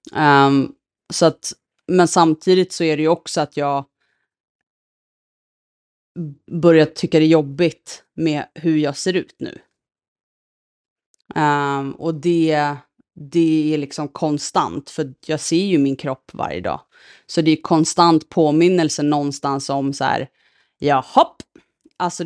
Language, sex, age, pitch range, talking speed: Swedish, female, 30-49, 145-170 Hz, 135 wpm